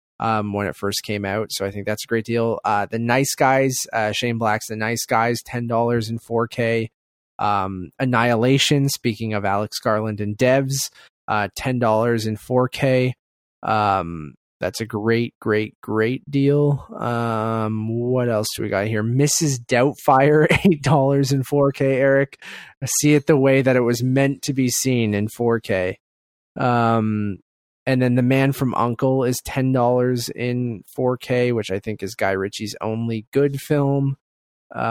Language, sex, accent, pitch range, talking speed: English, male, American, 110-130 Hz, 160 wpm